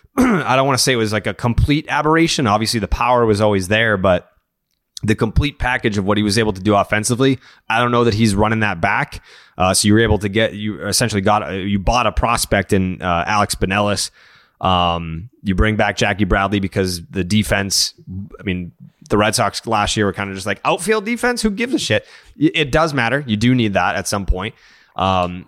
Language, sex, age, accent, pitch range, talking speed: English, male, 30-49, American, 100-125 Hz, 220 wpm